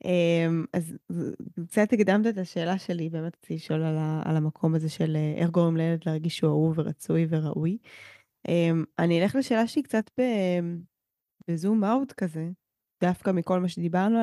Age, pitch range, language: 20-39, 170-205 Hz, Hebrew